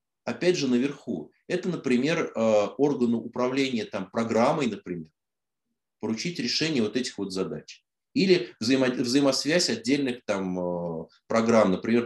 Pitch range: 105-140 Hz